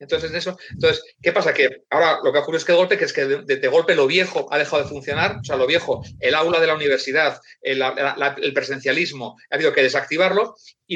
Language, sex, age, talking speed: Spanish, male, 40-59, 240 wpm